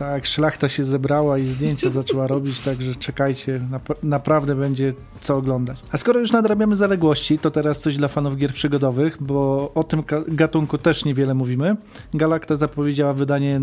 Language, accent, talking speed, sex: Polish, native, 160 wpm, male